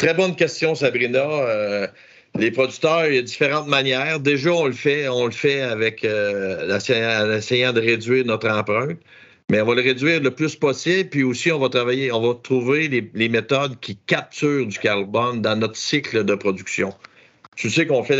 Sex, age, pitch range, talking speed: male, 50-69, 110-145 Hz, 190 wpm